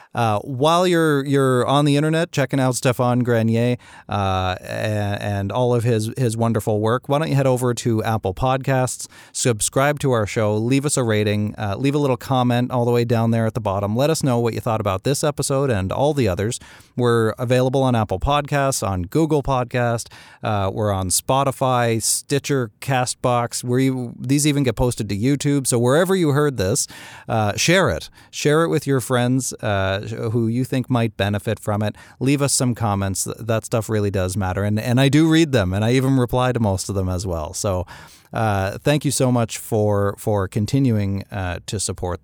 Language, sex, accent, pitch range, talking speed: English, male, American, 105-130 Hz, 200 wpm